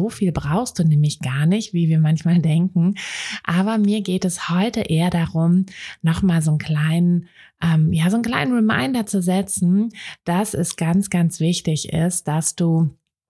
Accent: German